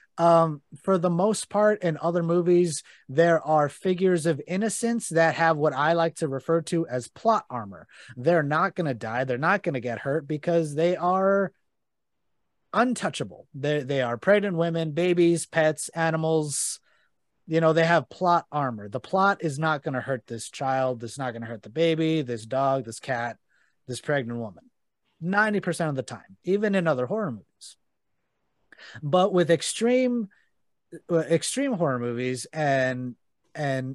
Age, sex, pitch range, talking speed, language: 30-49, male, 135-180 Hz, 165 wpm, English